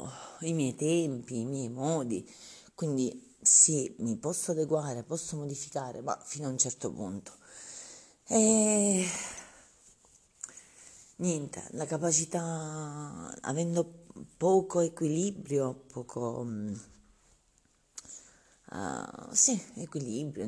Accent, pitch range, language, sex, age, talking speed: native, 125-160 Hz, Italian, female, 40-59, 90 wpm